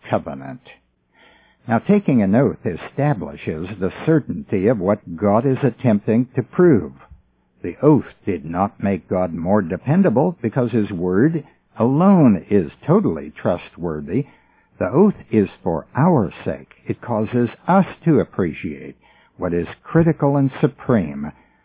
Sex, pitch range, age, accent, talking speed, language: male, 90-135 Hz, 60-79, American, 125 wpm, English